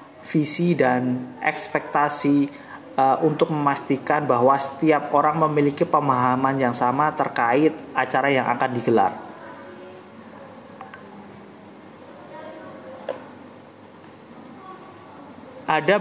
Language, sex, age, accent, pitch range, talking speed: Indonesian, male, 30-49, native, 125-145 Hz, 70 wpm